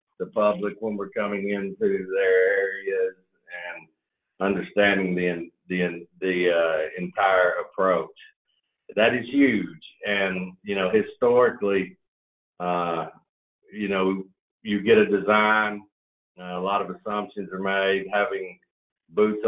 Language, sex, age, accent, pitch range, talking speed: English, male, 50-69, American, 95-125 Hz, 115 wpm